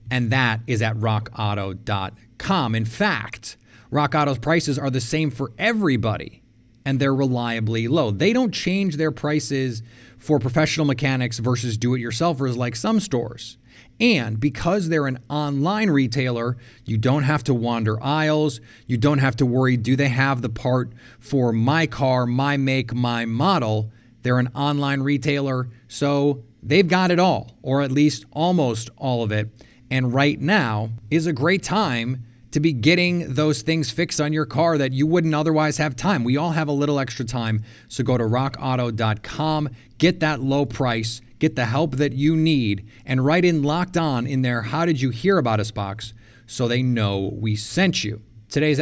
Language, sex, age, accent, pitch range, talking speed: English, male, 30-49, American, 120-150 Hz, 165 wpm